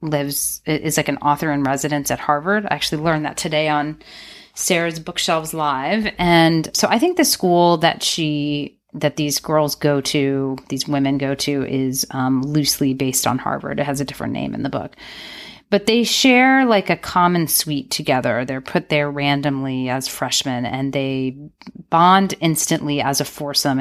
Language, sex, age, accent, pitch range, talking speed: English, female, 30-49, American, 140-170 Hz, 175 wpm